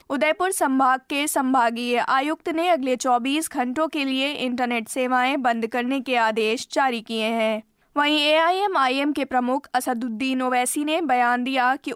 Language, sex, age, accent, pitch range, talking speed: Hindi, female, 20-39, native, 235-280 Hz, 155 wpm